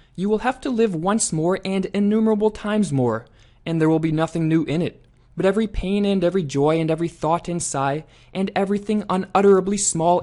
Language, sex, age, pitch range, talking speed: English, male, 20-39, 130-190 Hz, 200 wpm